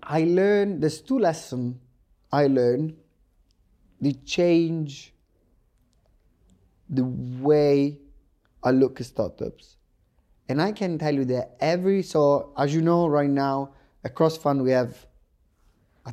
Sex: male